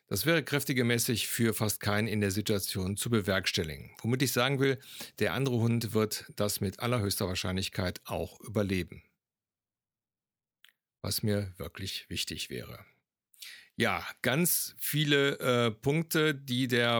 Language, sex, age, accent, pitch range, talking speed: German, male, 50-69, German, 105-125 Hz, 130 wpm